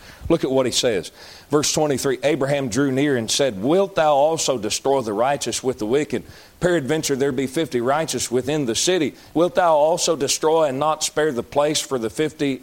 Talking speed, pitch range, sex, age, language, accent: 195 wpm, 115-155 Hz, male, 40-59, English, American